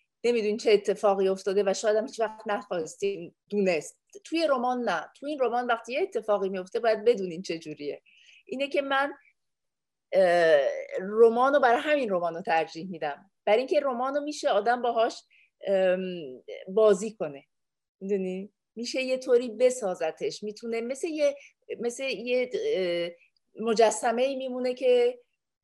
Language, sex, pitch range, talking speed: English, female, 205-275 Hz, 130 wpm